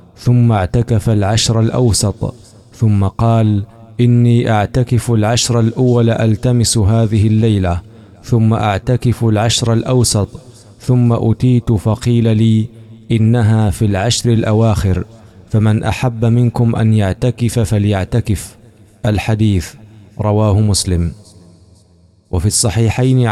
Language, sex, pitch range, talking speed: Arabic, male, 105-115 Hz, 95 wpm